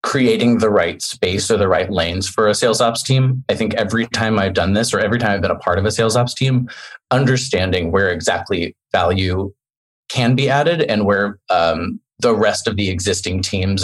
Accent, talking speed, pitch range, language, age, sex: American, 210 wpm, 100-120 Hz, English, 20-39, male